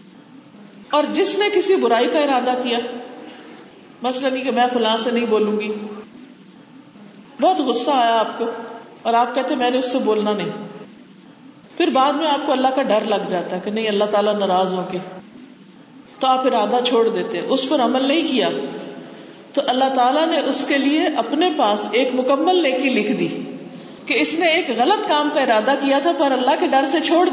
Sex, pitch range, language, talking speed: female, 225-280 Hz, Urdu, 195 wpm